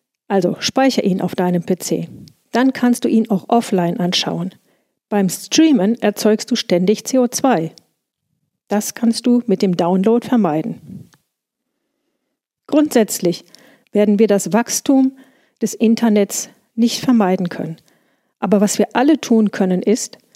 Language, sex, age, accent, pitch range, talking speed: German, female, 50-69, German, 190-255 Hz, 125 wpm